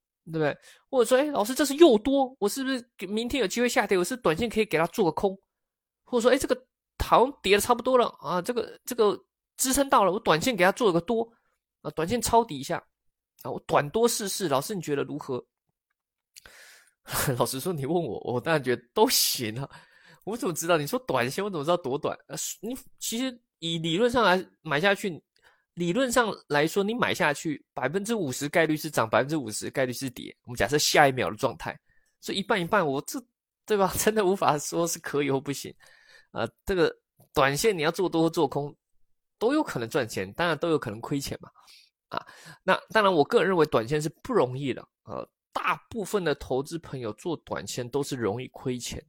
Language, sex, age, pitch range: Chinese, male, 20-39, 145-235 Hz